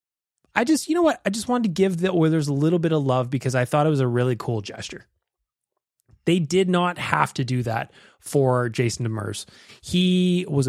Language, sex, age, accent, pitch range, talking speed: English, male, 20-39, American, 135-180 Hz, 215 wpm